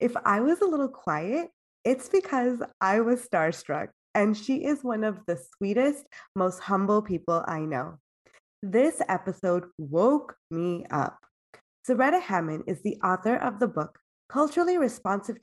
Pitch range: 180-255 Hz